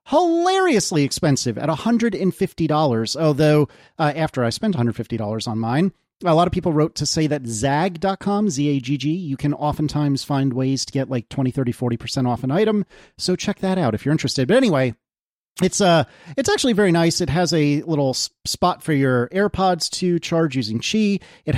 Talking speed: 175 wpm